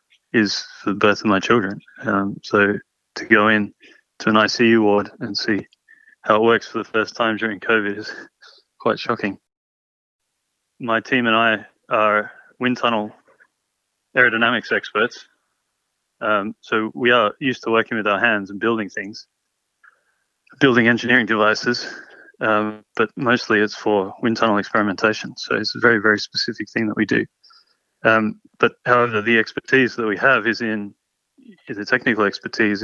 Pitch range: 105-120 Hz